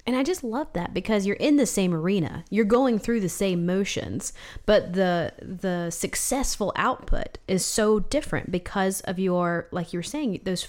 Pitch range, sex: 175-220 Hz, female